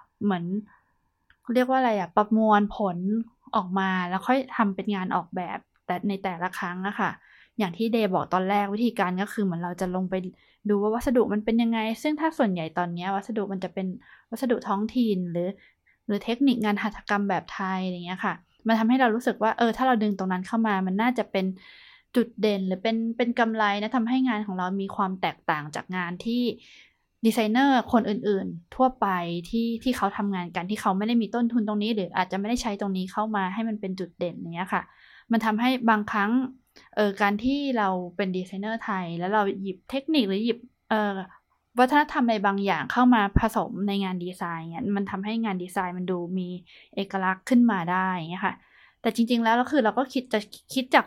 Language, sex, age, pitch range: Thai, female, 20-39, 190-230 Hz